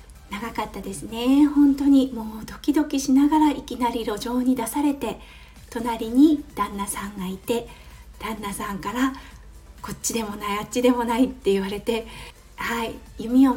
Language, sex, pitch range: Japanese, female, 225-305 Hz